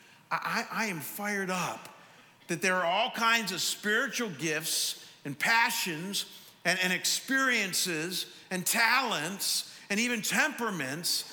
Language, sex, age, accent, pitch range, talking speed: English, male, 50-69, American, 175-220 Hz, 120 wpm